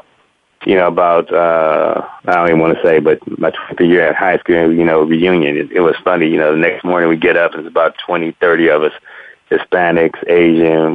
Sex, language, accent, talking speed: male, English, American, 225 wpm